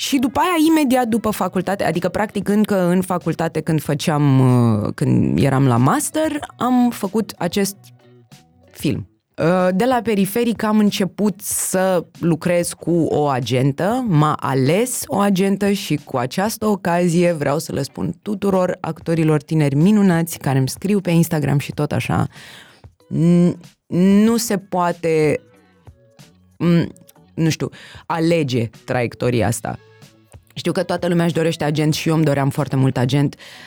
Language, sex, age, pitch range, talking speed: Romanian, female, 20-39, 130-185 Hz, 135 wpm